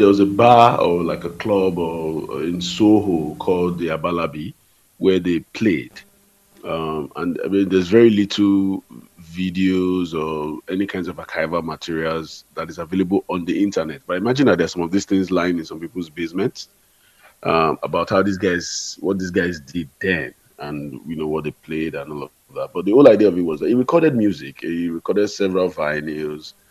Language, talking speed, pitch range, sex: English, 190 wpm, 80-100 Hz, male